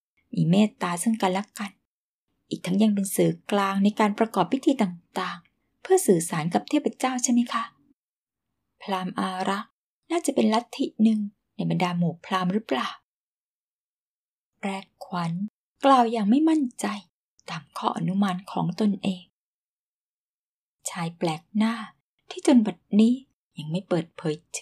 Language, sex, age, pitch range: Thai, female, 20-39, 175-230 Hz